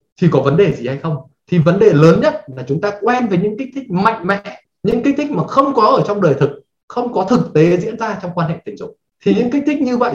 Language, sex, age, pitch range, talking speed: Vietnamese, male, 20-39, 150-235 Hz, 290 wpm